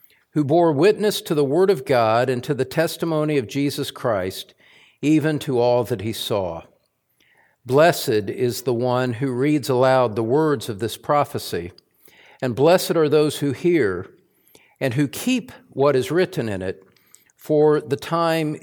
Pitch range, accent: 120-150 Hz, American